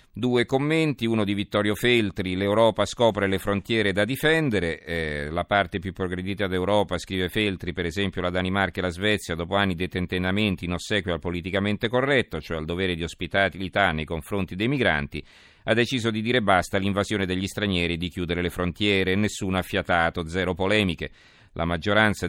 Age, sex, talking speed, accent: 40-59, male, 175 wpm, native